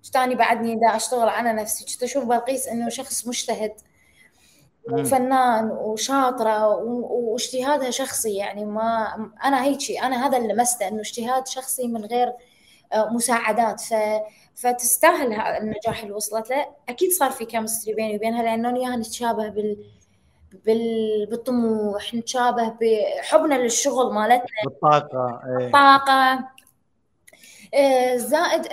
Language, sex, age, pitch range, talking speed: Arabic, female, 20-39, 215-265 Hz, 115 wpm